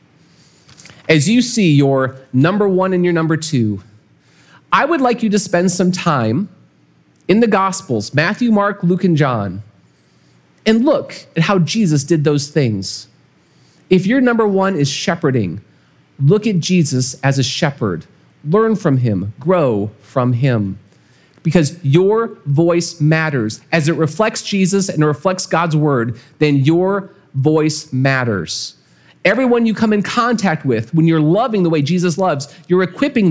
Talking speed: 150 wpm